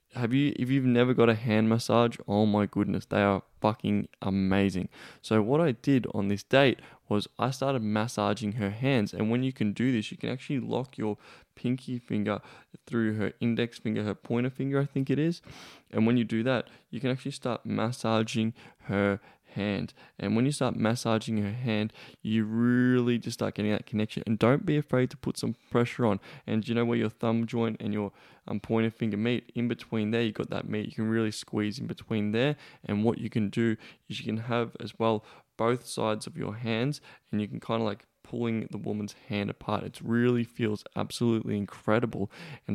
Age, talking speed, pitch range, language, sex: 10-29, 210 wpm, 105-120 Hz, English, male